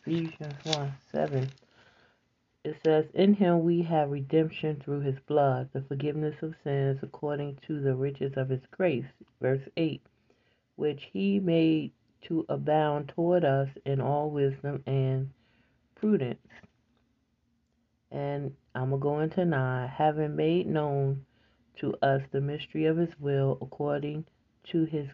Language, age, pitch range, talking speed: English, 40-59, 135-160 Hz, 135 wpm